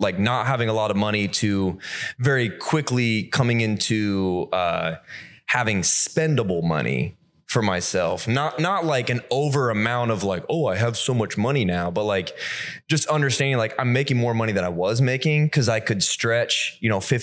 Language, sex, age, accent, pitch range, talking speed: English, male, 20-39, American, 100-135 Hz, 180 wpm